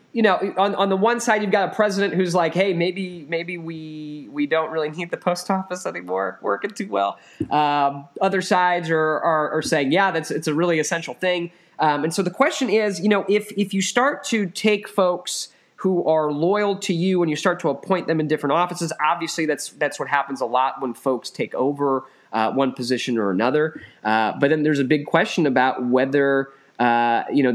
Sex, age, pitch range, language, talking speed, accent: male, 20-39, 125-175 Hz, English, 220 wpm, American